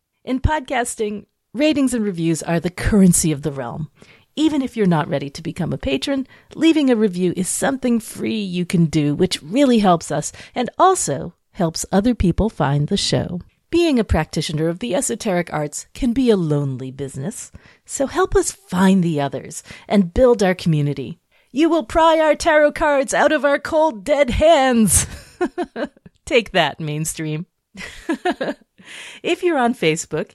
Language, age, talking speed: English, 40-59, 160 wpm